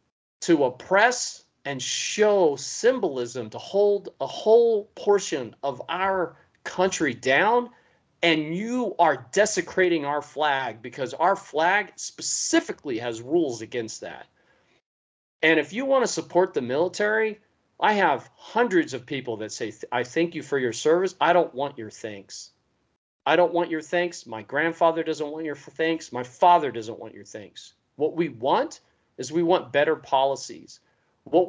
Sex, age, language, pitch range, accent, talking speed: male, 40-59, English, 140-190 Hz, American, 150 wpm